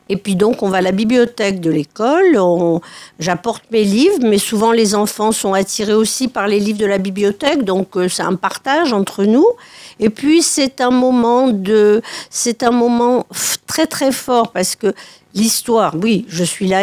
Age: 50-69